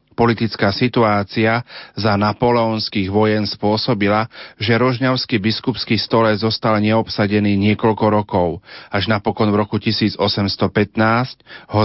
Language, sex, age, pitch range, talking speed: Slovak, male, 40-59, 105-120 Hz, 100 wpm